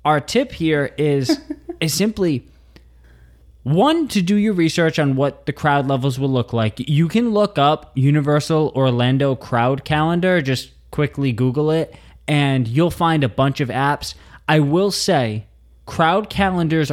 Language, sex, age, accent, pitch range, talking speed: English, male, 20-39, American, 120-155 Hz, 150 wpm